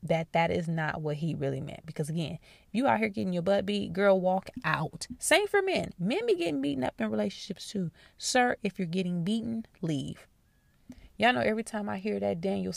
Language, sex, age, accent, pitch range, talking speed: English, female, 20-39, American, 165-200 Hz, 215 wpm